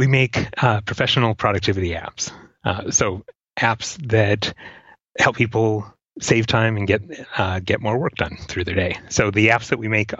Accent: American